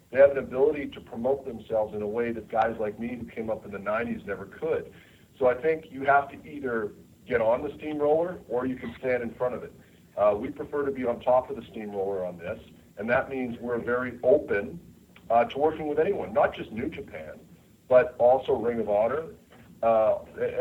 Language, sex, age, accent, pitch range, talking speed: English, male, 50-69, American, 105-135 Hz, 215 wpm